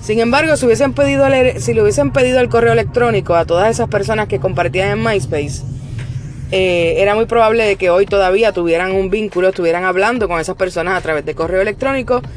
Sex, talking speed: female, 205 wpm